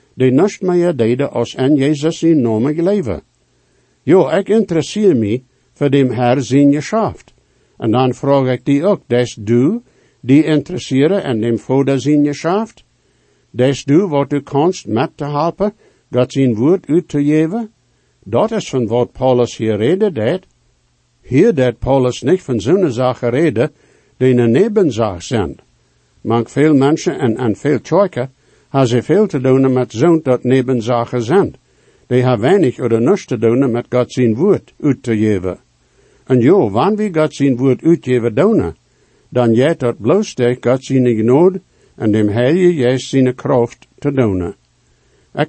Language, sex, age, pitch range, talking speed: English, male, 60-79, 120-160 Hz, 160 wpm